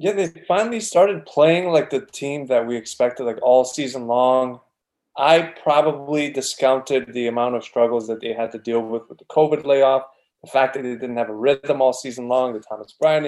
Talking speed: 210 wpm